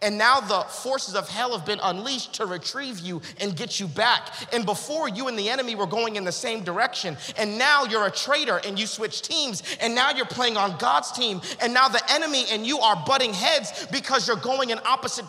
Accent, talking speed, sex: American, 230 wpm, male